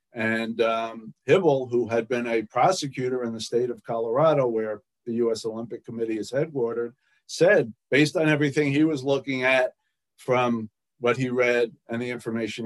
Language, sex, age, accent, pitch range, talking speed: English, male, 50-69, American, 115-130 Hz, 165 wpm